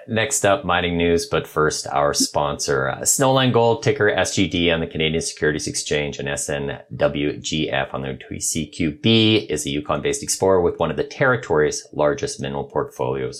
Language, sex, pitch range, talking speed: English, male, 75-110 Hz, 155 wpm